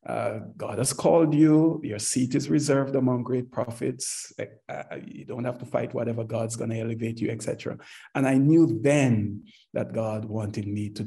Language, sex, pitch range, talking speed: English, male, 110-135 Hz, 185 wpm